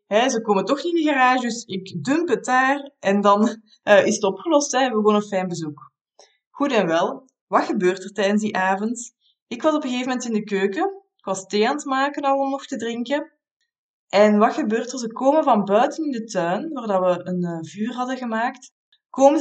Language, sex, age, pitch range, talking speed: Dutch, female, 20-39, 205-275 Hz, 225 wpm